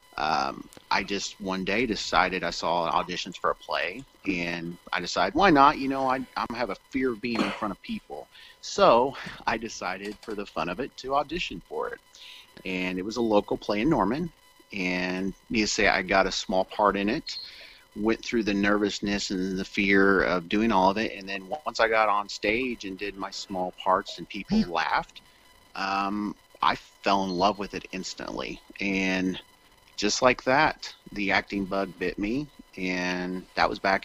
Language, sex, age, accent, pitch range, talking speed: English, male, 30-49, American, 90-110 Hz, 190 wpm